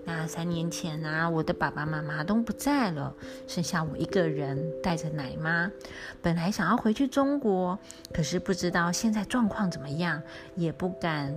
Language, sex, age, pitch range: Chinese, female, 30-49, 160-225 Hz